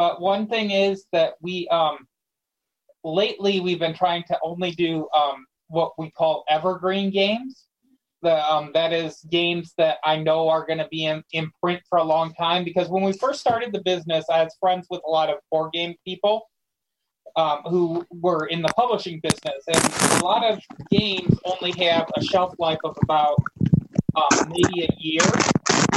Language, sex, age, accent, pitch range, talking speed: English, male, 30-49, American, 160-185 Hz, 180 wpm